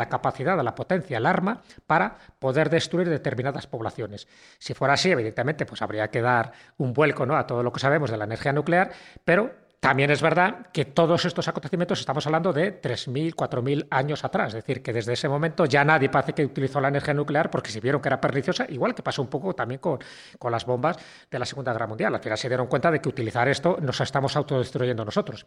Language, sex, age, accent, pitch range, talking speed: Spanish, male, 30-49, Spanish, 130-175 Hz, 220 wpm